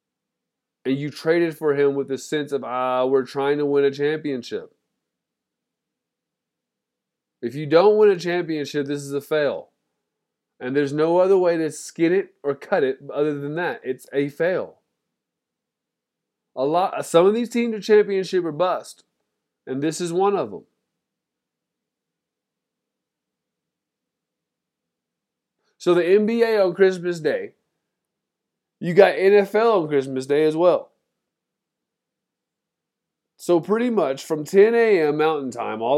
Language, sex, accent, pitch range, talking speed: English, male, American, 145-195 Hz, 135 wpm